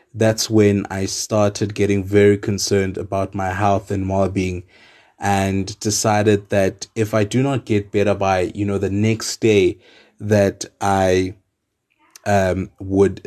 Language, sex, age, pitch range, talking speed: English, male, 30-49, 95-110 Hz, 140 wpm